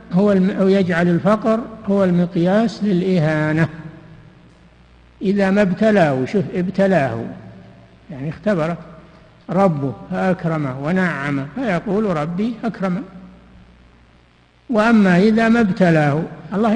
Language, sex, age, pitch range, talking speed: Arabic, male, 60-79, 145-190 Hz, 85 wpm